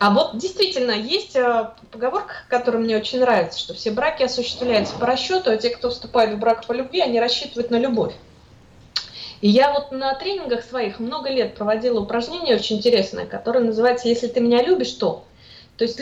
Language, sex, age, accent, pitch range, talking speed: Russian, female, 20-39, native, 215-280 Hz, 185 wpm